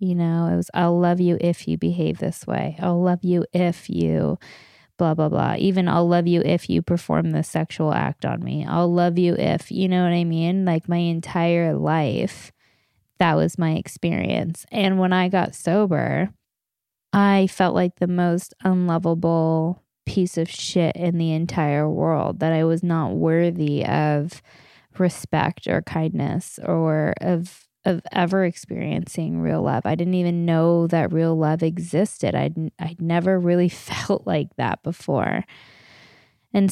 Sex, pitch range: female, 160-185 Hz